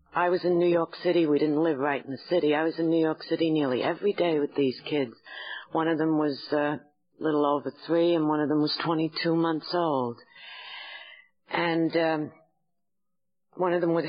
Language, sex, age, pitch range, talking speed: English, female, 60-79, 150-180 Hz, 200 wpm